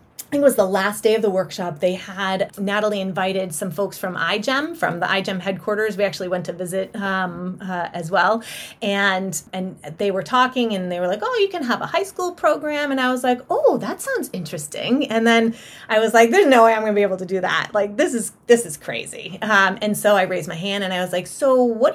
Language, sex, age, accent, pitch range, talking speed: English, female, 30-49, American, 190-235 Hz, 250 wpm